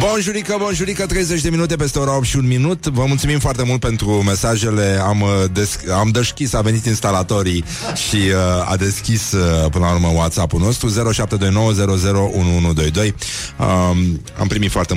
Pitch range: 90-125 Hz